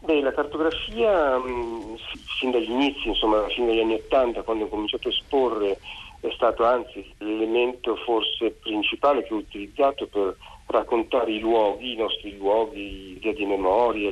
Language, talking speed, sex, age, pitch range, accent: Italian, 145 wpm, male, 50-69, 110-155 Hz, native